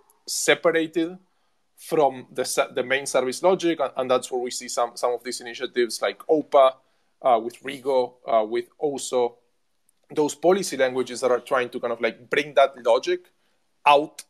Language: English